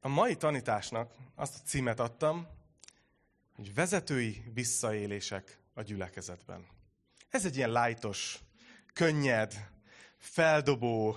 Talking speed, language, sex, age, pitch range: 95 wpm, Hungarian, male, 30-49, 115-155 Hz